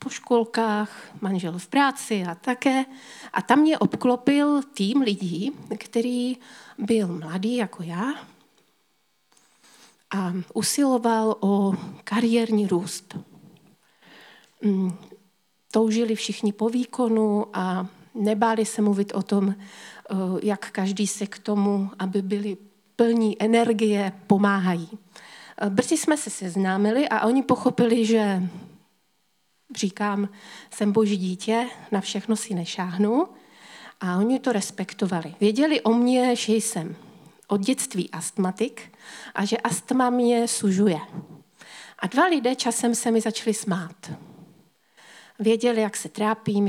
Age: 40-59